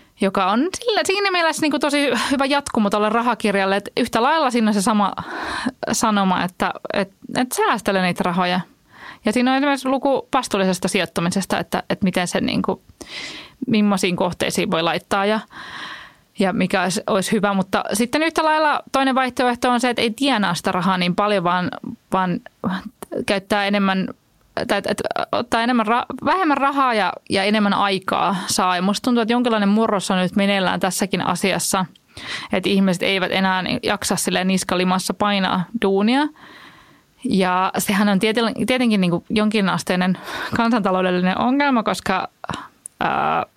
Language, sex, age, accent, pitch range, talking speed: Finnish, female, 20-39, native, 190-245 Hz, 140 wpm